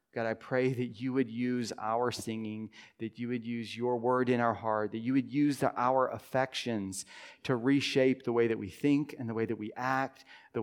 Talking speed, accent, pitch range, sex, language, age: 215 wpm, American, 105-130 Hz, male, English, 40-59